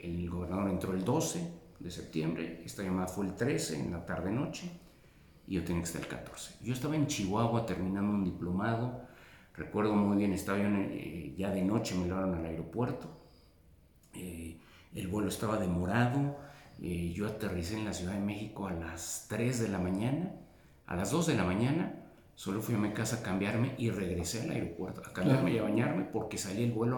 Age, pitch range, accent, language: 50-69, 85-110 Hz, Mexican, Spanish